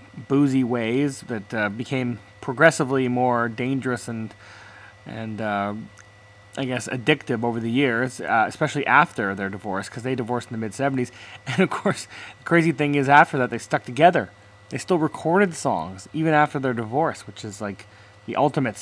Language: English